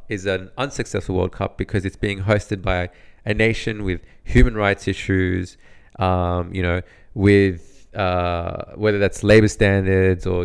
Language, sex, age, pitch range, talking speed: English, male, 20-39, 95-110 Hz, 150 wpm